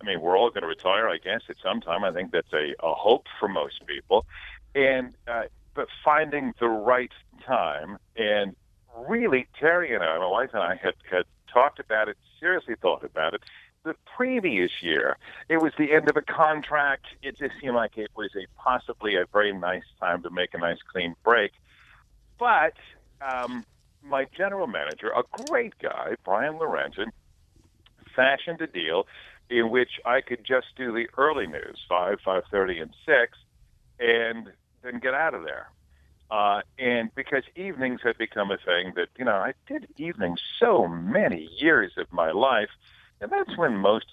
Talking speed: 175 wpm